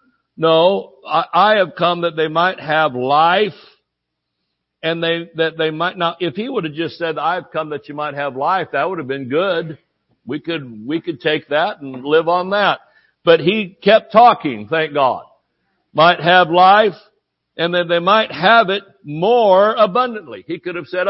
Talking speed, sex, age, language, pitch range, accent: 190 wpm, male, 60-79, English, 140-180 Hz, American